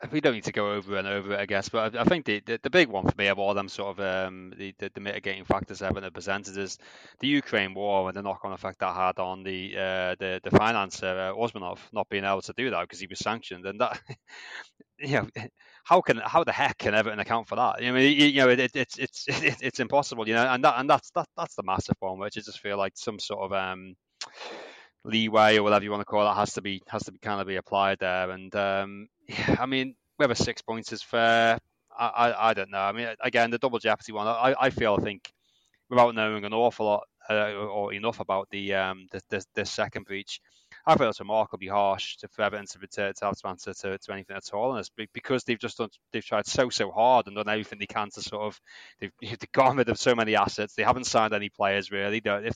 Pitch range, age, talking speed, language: 100-115 Hz, 20-39, 255 wpm, English